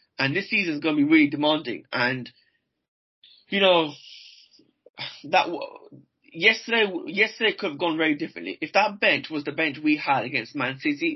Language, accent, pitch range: English, British, 140-220 Hz